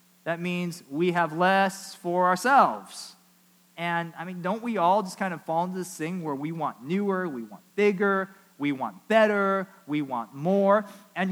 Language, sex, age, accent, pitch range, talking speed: English, male, 20-39, American, 165-215 Hz, 180 wpm